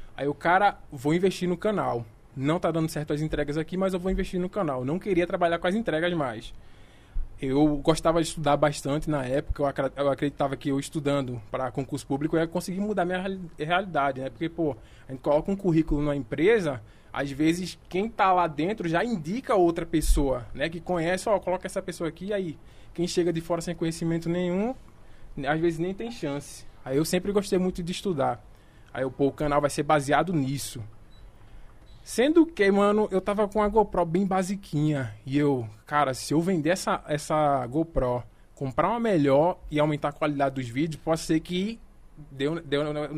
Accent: Brazilian